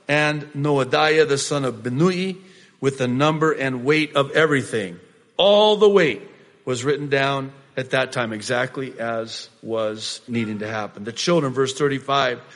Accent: American